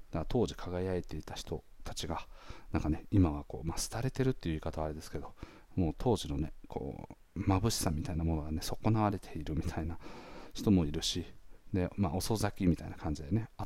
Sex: male